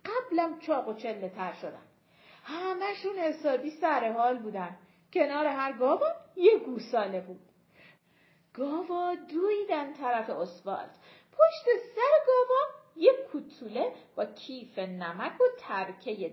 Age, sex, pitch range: 40-59, female, 225-330 Hz